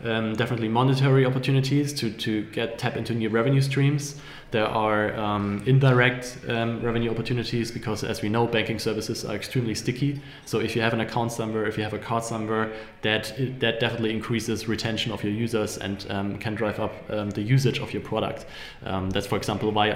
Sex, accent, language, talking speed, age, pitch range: male, German, English, 195 wpm, 20-39, 105-120 Hz